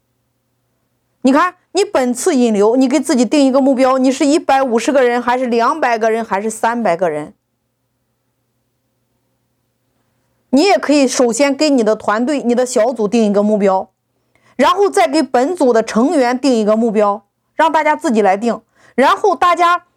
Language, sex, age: Chinese, female, 30-49